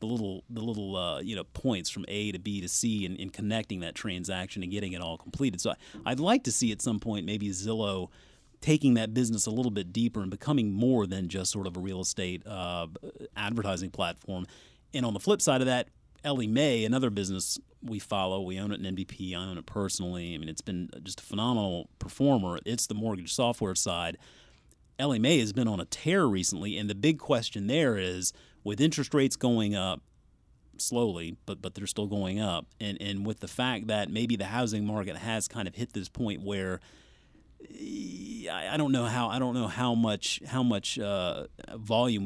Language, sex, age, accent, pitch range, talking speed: English, male, 30-49, American, 90-115 Hz, 205 wpm